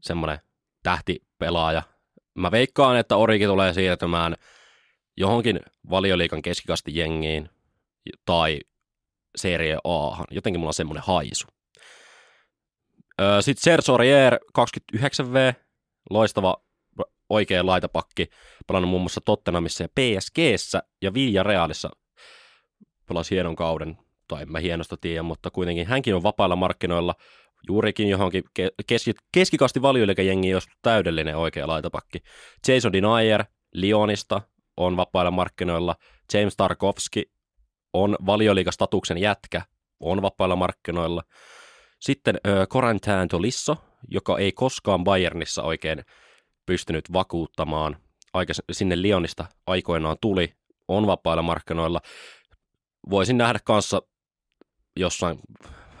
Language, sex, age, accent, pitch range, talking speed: Finnish, male, 20-39, native, 85-105 Hz, 100 wpm